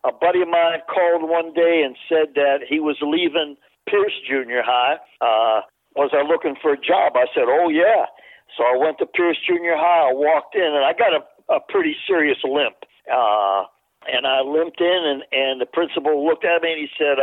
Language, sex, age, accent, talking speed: English, male, 60-79, American, 210 wpm